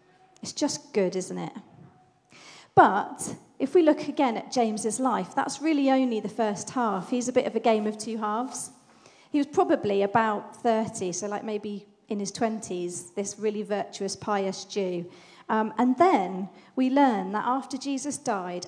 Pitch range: 195-245 Hz